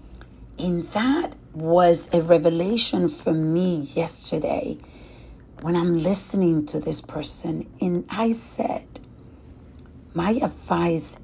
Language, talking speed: English, 100 wpm